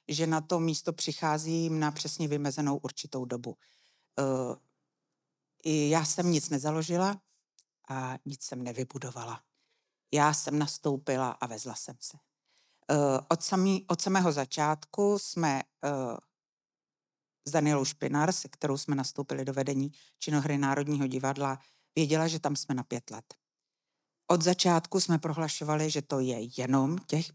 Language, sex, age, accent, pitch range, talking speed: Czech, female, 60-79, native, 135-155 Hz, 125 wpm